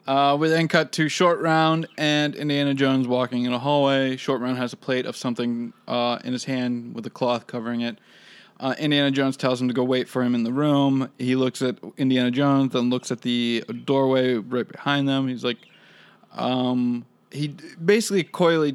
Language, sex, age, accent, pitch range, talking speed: English, male, 20-39, American, 130-155 Hz, 200 wpm